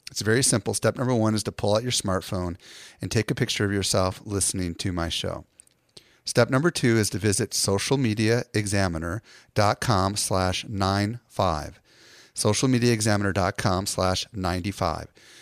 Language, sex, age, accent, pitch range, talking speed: English, male, 40-59, American, 95-120 Hz, 130 wpm